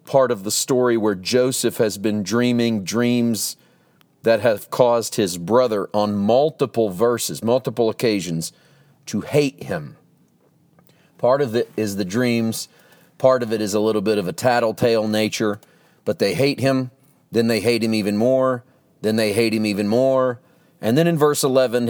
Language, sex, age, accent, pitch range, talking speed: English, male, 40-59, American, 115-155 Hz, 165 wpm